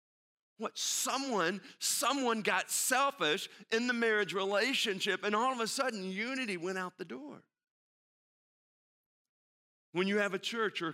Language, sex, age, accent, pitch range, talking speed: English, male, 50-69, American, 165-200 Hz, 135 wpm